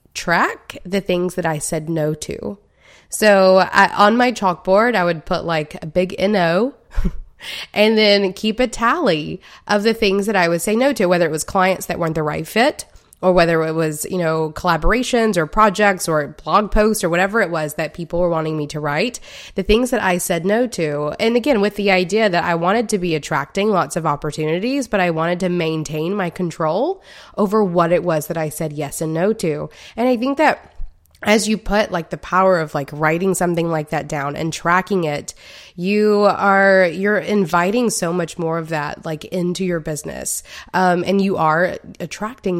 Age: 20-39